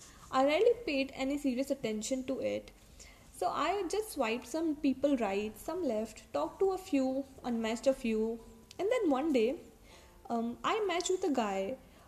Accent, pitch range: Indian, 235-300 Hz